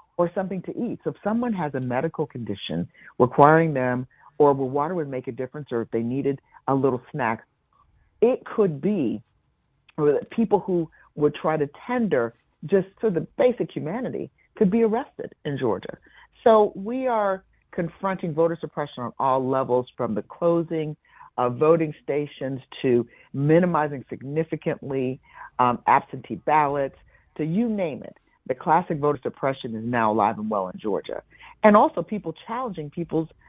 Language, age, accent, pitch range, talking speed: English, 50-69, American, 135-185 Hz, 155 wpm